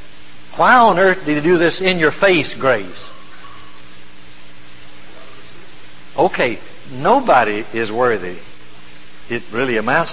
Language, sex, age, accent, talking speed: English, male, 60-79, American, 95 wpm